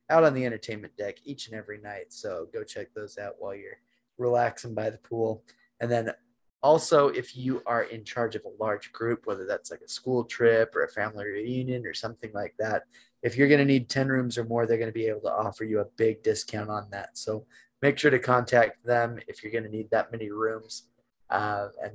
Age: 20-39